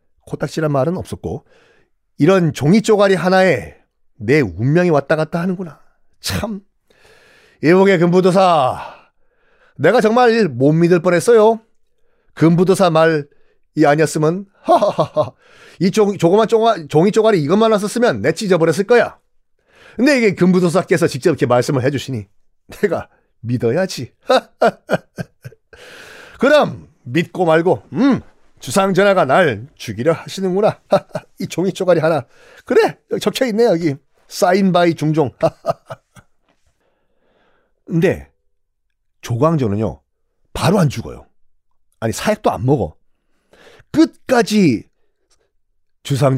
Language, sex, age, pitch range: Korean, male, 40-59, 145-220 Hz